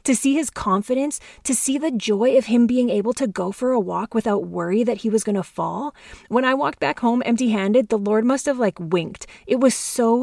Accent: American